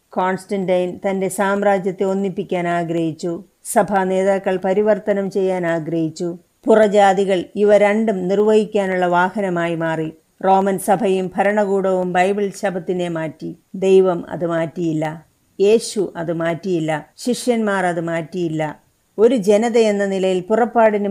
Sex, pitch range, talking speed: female, 180-205 Hz, 100 wpm